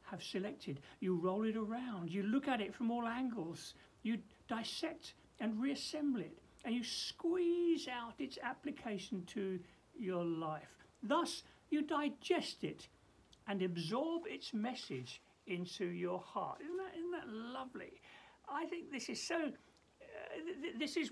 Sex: male